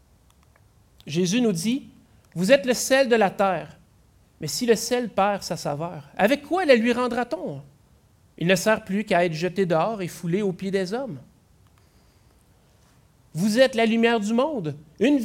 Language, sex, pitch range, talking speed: French, male, 165-225 Hz, 170 wpm